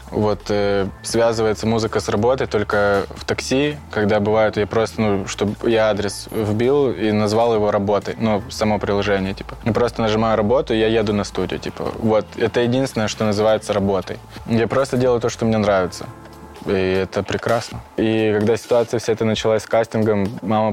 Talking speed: 175 wpm